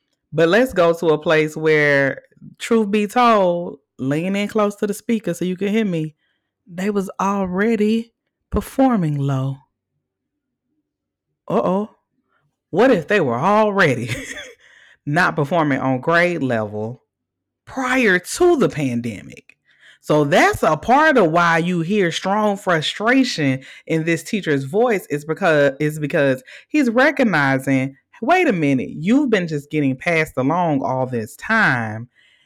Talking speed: 135 wpm